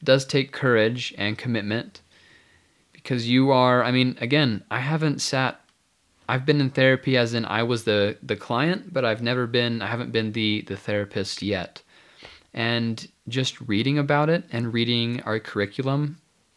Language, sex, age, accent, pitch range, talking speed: English, male, 20-39, American, 105-130 Hz, 165 wpm